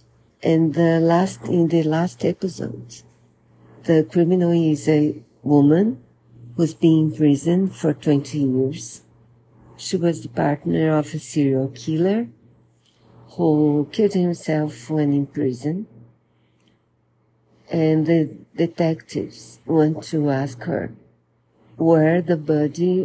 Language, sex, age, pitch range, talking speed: Portuguese, female, 50-69, 115-165 Hz, 110 wpm